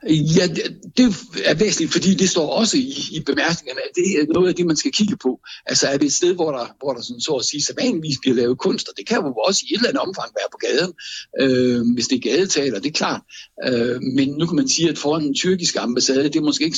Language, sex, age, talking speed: Danish, male, 60-79, 260 wpm